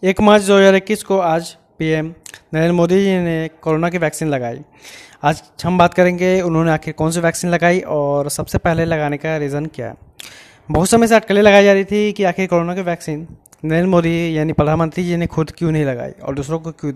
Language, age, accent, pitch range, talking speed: Hindi, 20-39, native, 150-180 Hz, 210 wpm